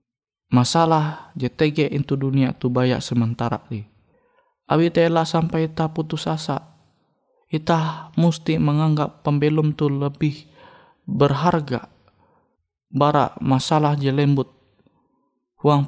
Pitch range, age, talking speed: 125-155 Hz, 20-39, 100 wpm